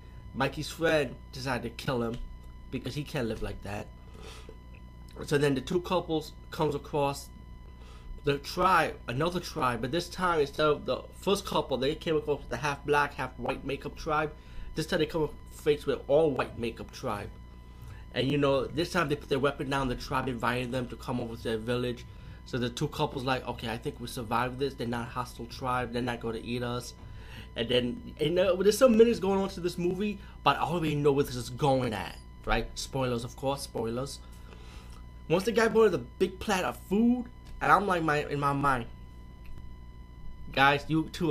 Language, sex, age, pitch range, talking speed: English, male, 30-49, 110-150 Hz, 195 wpm